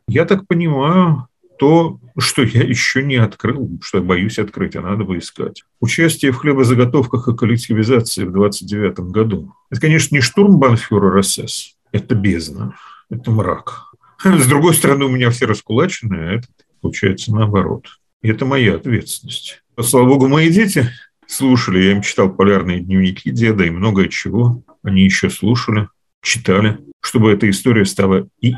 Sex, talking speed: male, 155 wpm